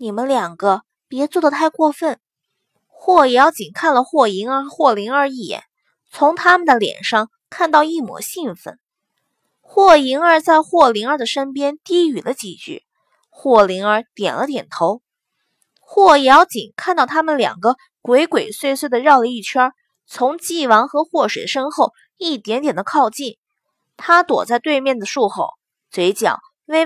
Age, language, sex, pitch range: 20-39, Chinese, female, 240-335 Hz